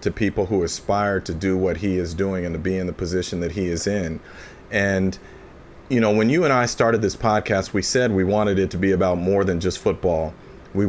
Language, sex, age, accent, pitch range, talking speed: English, male, 40-59, American, 90-110 Hz, 235 wpm